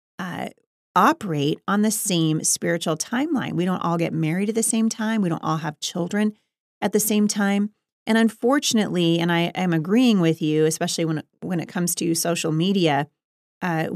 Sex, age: female, 30-49